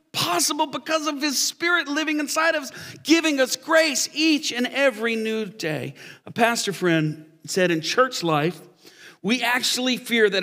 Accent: American